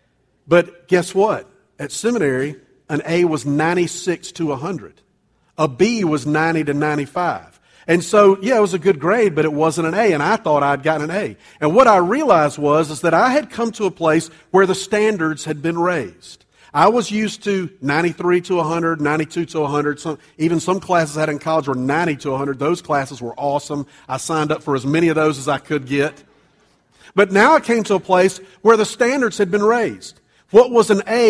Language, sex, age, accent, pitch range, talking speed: English, male, 50-69, American, 155-205 Hz, 210 wpm